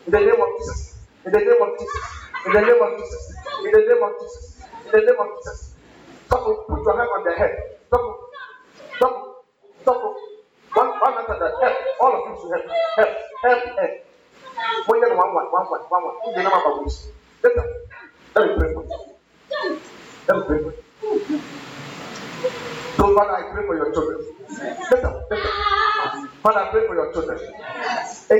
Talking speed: 170 wpm